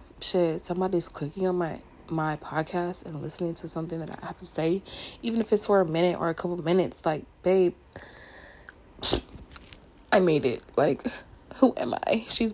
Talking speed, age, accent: 170 wpm, 20-39, American